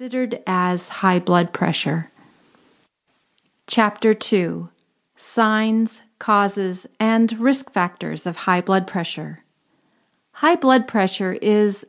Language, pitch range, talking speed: English, 180-230 Hz, 100 wpm